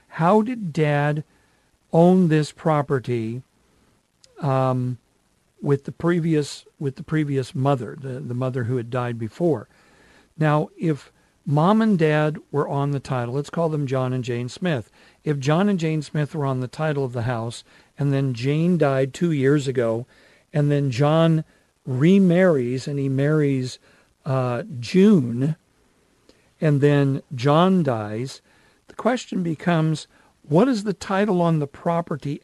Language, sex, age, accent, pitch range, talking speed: English, male, 50-69, American, 135-165 Hz, 145 wpm